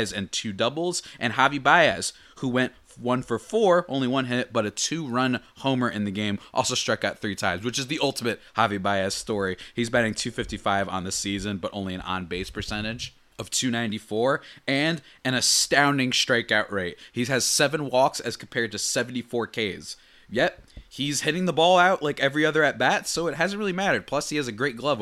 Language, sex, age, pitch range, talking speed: English, male, 20-39, 100-130 Hz, 195 wpm